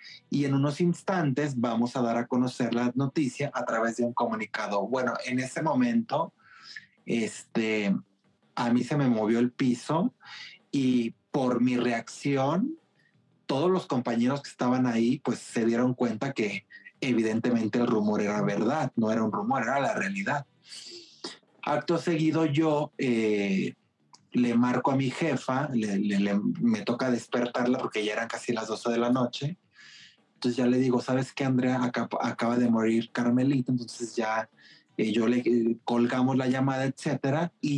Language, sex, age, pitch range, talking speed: Spanish, male, 30-49, 120-140 Hz, 160 wpm